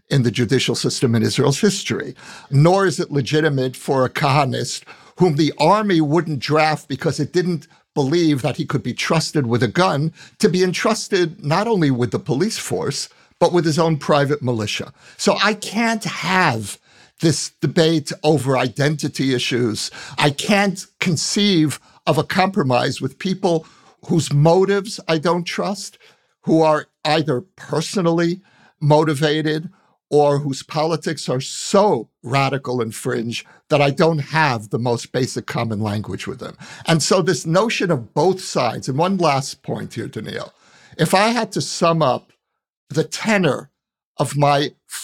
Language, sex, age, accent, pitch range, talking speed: English, male, 50-69, American, 135-175 Hz, 155 wpm